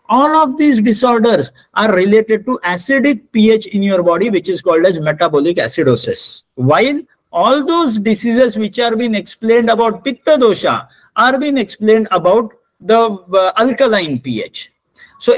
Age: 50-69